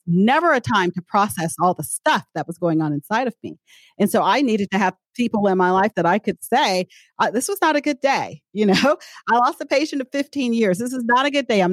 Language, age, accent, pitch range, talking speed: English, 40-59, American, 175-235 Hz, 260 wpm